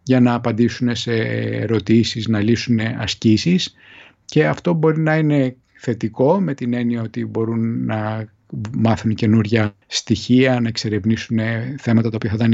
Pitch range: 115-165 Hz